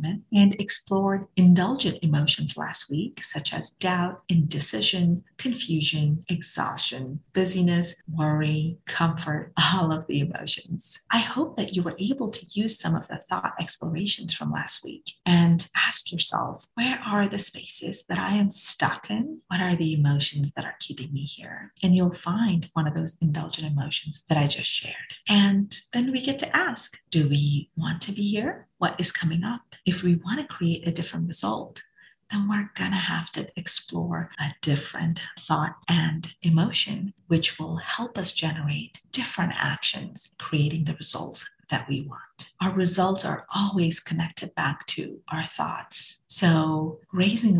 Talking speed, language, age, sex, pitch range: 160 wpm, English, 30-49, female, 160-195 Hz